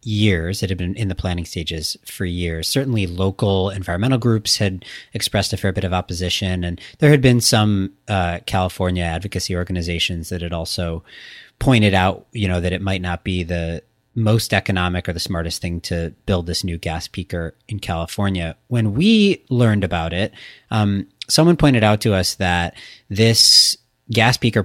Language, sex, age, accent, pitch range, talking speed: English, male, 30-49, American, 85-105 Hz, 175 wpm